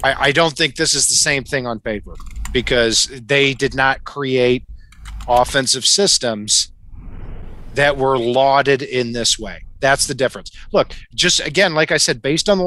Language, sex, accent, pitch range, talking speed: English, male, American, 110-160 Hz, 165 wpm